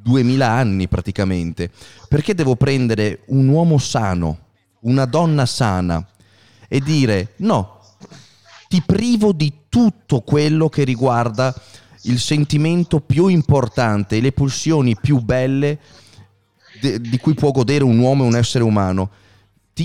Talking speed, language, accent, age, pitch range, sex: 125 wpm, Italian, native, 30-49, 105-140 Hz, male